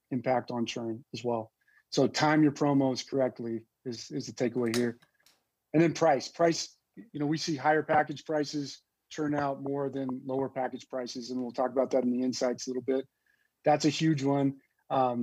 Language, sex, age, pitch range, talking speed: English, male, 40-59, 130-150 Hz, 195 wpm